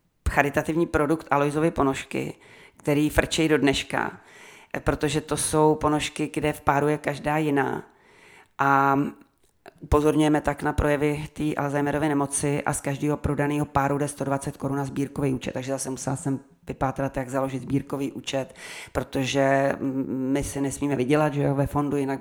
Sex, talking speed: female, 150 wpm